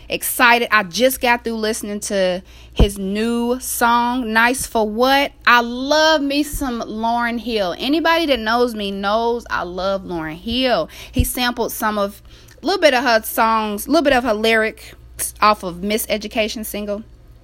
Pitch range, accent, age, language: 195-265 Hz, American, 30-49, English